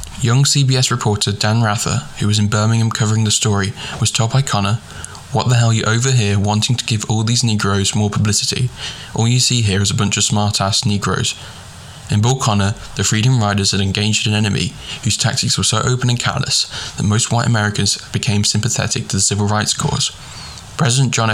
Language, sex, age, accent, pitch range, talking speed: English, male, 10-29, British, 100-115 Hz, 200 wpm